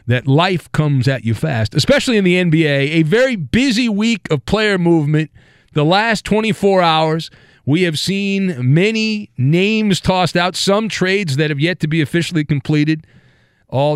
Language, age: English, 40-59